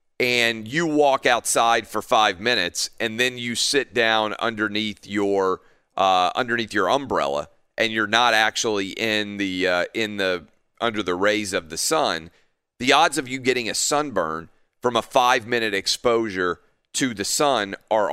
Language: English